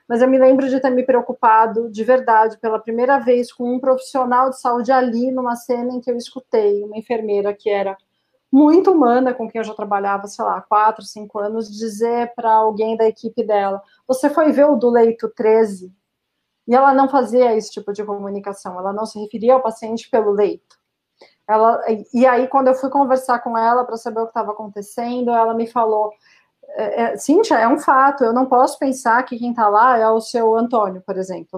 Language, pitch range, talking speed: Portuguese, 220-260 Hz, 205 wpm